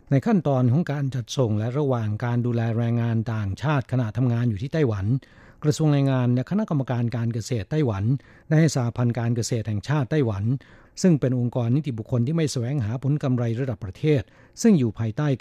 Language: Thai